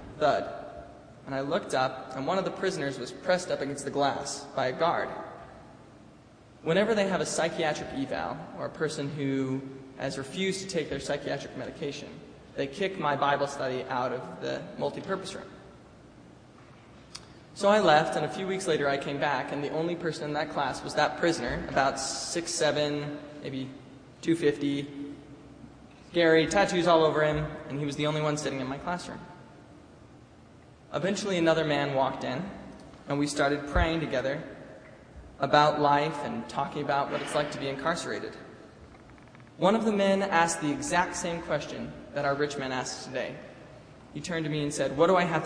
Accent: American